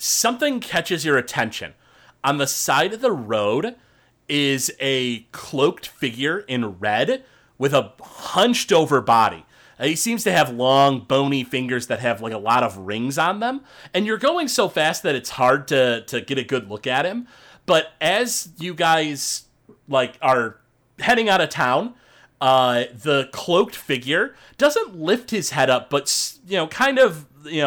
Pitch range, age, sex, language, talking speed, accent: 125-180 Hz, 30-49, male, English, 170 wpm, American